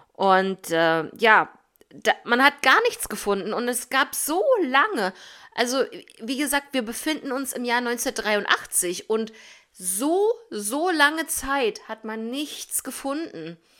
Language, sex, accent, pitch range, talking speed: German, female, German, 210-275 Hz, 135 wpm